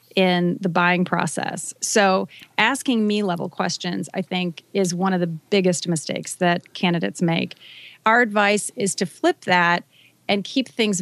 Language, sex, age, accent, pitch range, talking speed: English, female, 30-49, American, 180-220 Hz, 160 wpm